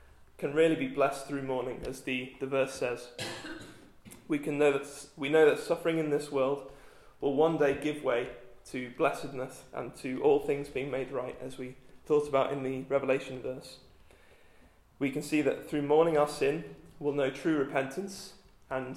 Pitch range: 130-150 Hz